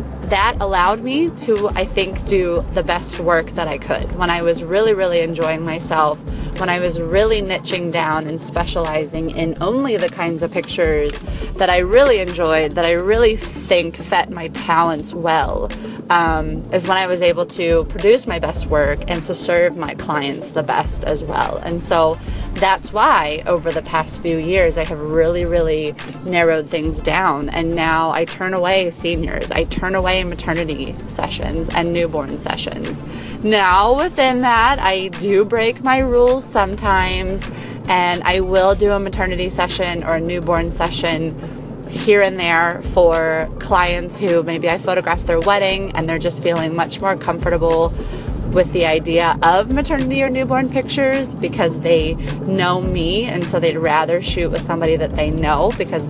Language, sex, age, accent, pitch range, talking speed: English, female, 20-39, American, 160-190 Hz, 170 wpm